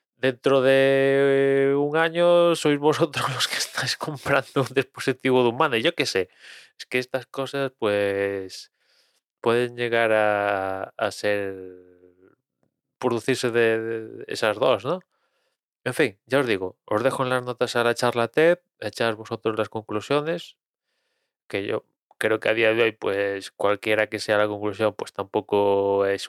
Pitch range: 105-135 Hz